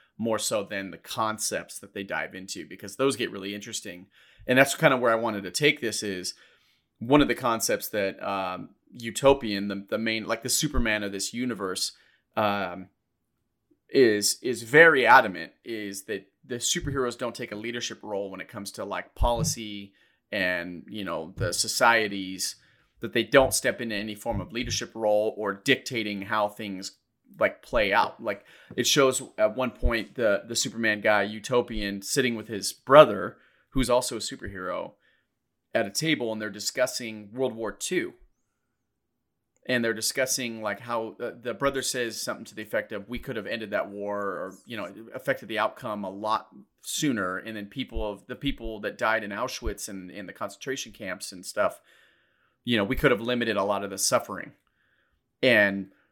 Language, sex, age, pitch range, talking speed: English, male, 30-49, 100-125 Hz, 180 wpm